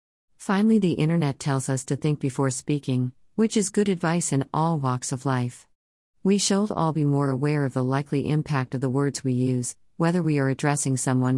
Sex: female